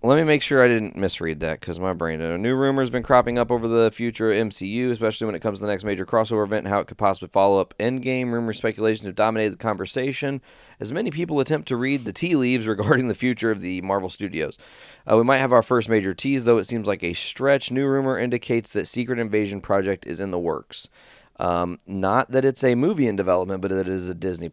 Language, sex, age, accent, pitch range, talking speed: English, male, 30-49, American, 95-120 Hz, 250 wpm